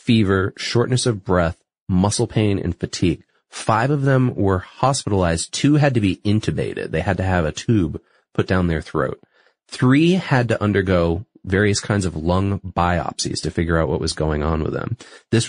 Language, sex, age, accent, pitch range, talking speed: English, male, 30-49, American, 90-125 Hz, 180 wpm